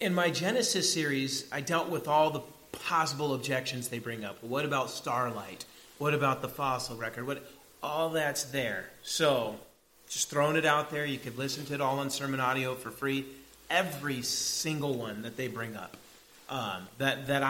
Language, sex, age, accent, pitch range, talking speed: English, male, 30-49, American, 125-160 Hz, 180 wpm